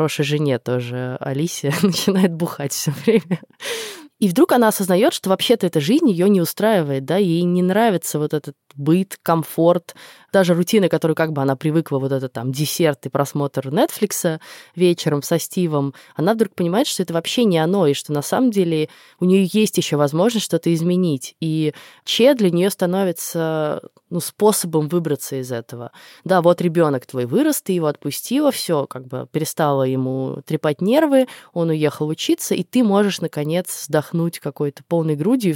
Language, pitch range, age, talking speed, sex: Russian, 145-185 Hz, 20-39, 170 wpm, female